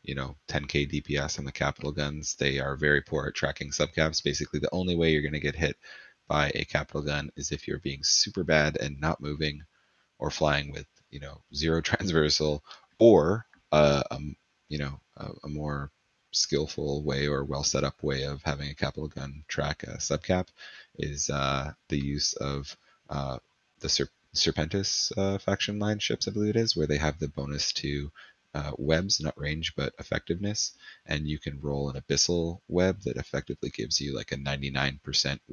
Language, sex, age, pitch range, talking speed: English, male, 30-49, 70-75 Hz, 180 wpm